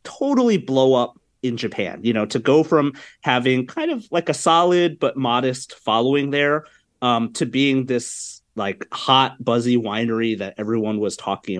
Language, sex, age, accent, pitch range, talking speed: English, male, 30-49, American, 110-145 Hz, 165 wpm